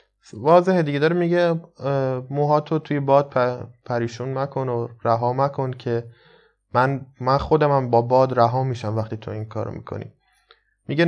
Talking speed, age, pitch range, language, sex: 155 wpm, 20-39, 120-145 Hz, Persian, male